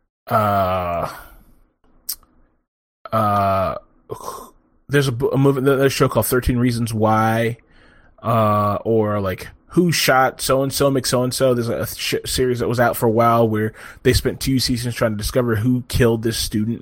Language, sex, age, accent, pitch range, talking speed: English, male, 20-39, American, 110-140 Hz, 165 wpm